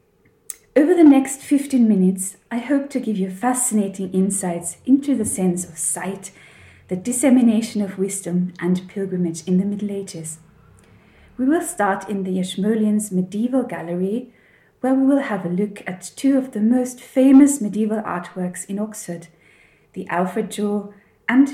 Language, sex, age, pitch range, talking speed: English, female, 30-49, 180-230 Hz, 155 wpm